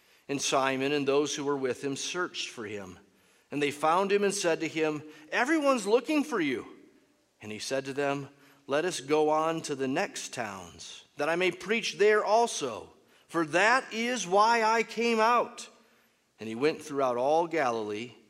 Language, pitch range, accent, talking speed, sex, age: English, 140-200 Hz, American, 180 wpm, male, 40-59